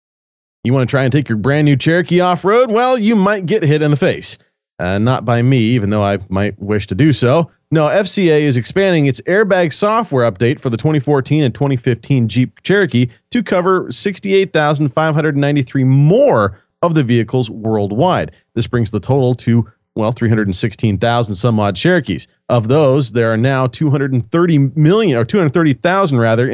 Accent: American